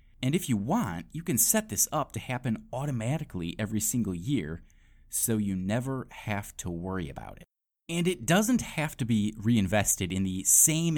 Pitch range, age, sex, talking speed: 85-125 Hz, 30-49, male, 180 wpm